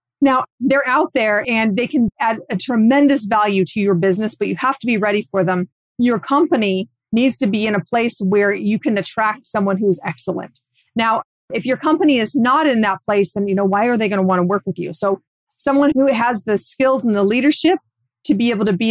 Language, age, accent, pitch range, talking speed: English, 30-49, American, 195-245 Hz, 230 wpm